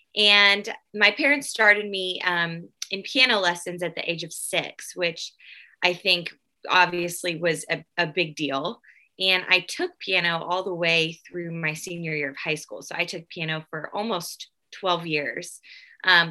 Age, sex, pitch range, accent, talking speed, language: 20-39, female, 170-210 Hz, American, 170 wpm, English